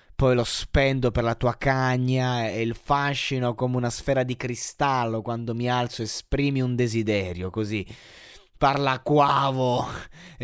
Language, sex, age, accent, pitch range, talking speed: Italian, male, 20-39, native, 110-135 Hz, 150 wpm